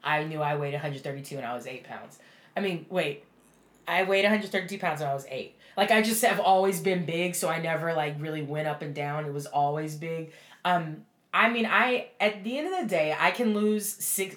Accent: American